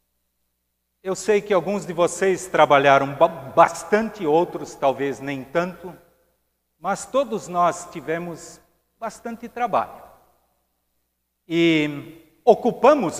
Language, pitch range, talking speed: Portuguese, 135-195 Hz, 90 wpm